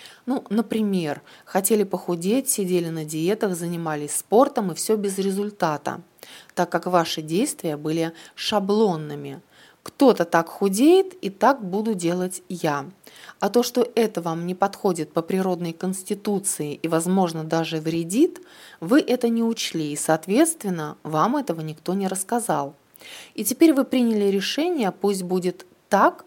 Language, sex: Russian, female